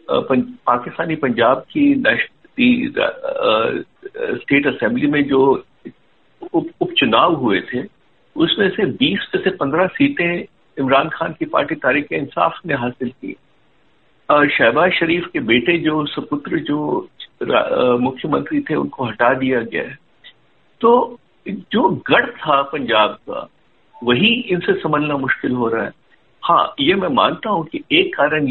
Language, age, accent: Hindi, 60-79, native